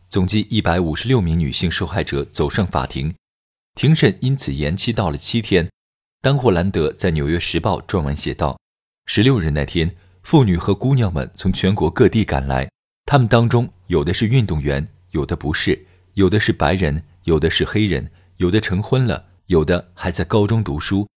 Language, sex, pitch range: Chinese, male, 85-115 Hz